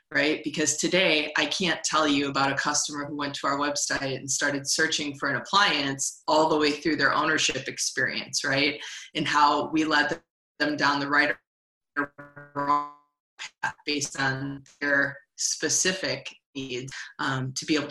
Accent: American